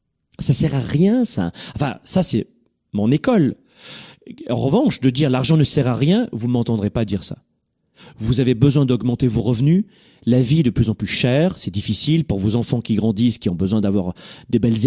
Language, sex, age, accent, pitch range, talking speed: French, male, 40-59, French, 115-155 Hz, 205 wpm